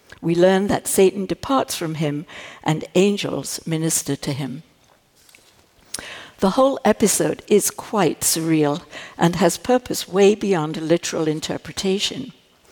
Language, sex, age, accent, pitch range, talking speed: English, female, 60-79, British, 160-195 Hz, 125 wpm